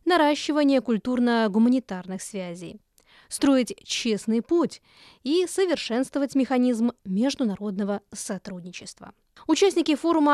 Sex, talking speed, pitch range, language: female, 75 wpm, 210-280 Hz, Russian